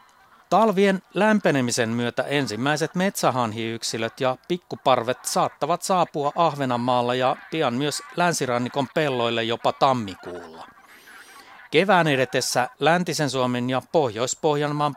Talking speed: 90 wpm